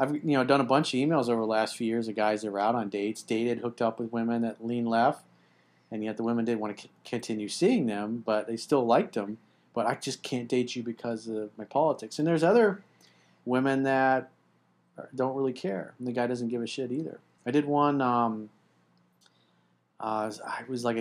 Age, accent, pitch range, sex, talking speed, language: 40-59, American, 105-120 Hz, male, 220 wpm, English